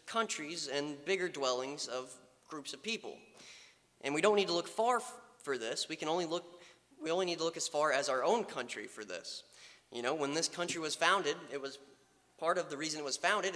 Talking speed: 225 wpm